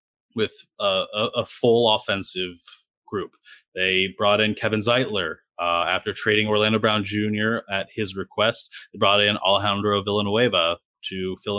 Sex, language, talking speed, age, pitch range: male, English, 140 wpm, 20-39, 100-120 Hz